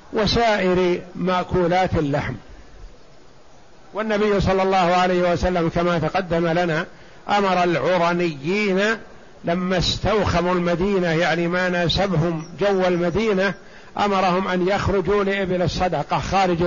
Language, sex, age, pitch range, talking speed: Arabic, male, 50-69, 170-200 Hz, 95 wpm